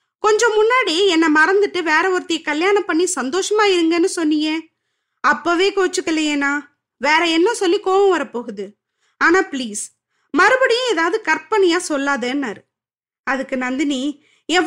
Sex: female